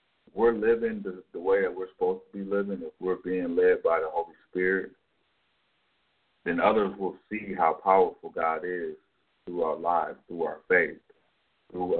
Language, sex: English, male